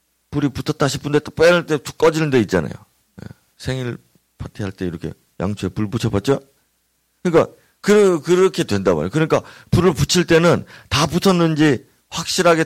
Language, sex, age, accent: Korean, male, 40-59, native